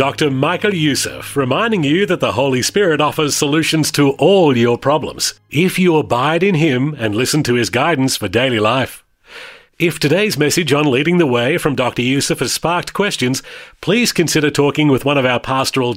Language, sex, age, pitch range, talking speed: English, male, 40-59, 130-170 Hz, 185 wpm